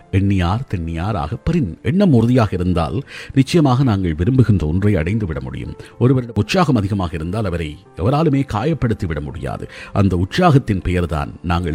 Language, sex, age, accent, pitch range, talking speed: Tamil, male, 50-69, native, 90-135 Hz, 130 wpm